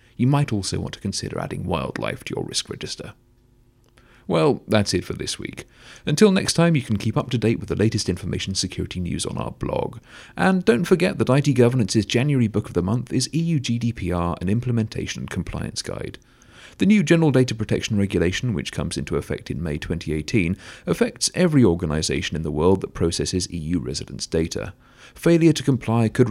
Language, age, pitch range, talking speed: English, 40-59, 90-125 Hz, 190 wpm